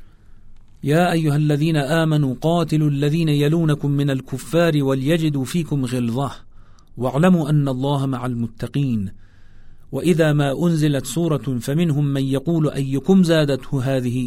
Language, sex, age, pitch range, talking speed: Persian, male, 40-59, 115-150 Hz, 115 wpm